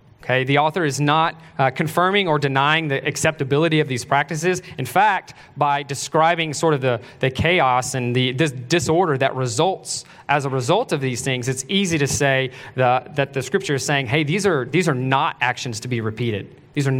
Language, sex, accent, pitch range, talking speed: English, male, American, 130-155 Hz, 200 wpm